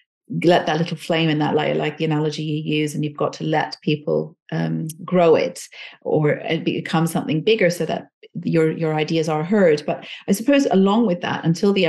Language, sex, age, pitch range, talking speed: English, female, 40-59, 160-200 Hz, 205 wpm